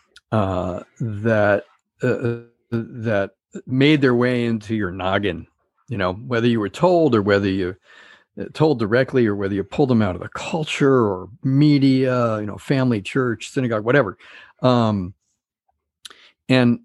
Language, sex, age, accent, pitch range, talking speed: English, male, 50-69, American, 105-130 Hz, 145 wpm